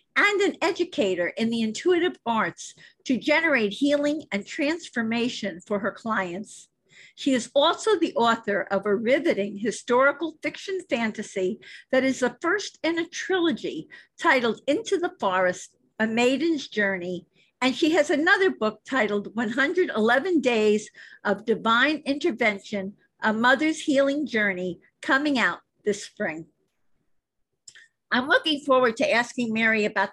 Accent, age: American, 50-69